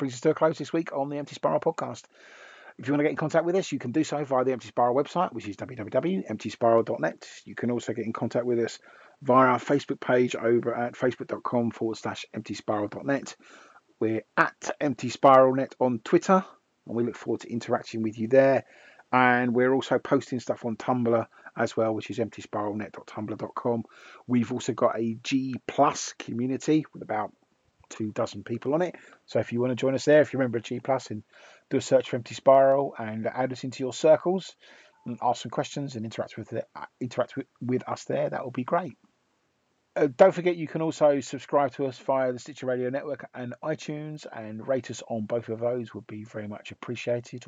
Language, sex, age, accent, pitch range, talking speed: English, male, 40-59, British, 115-145 Hz, 210 wpm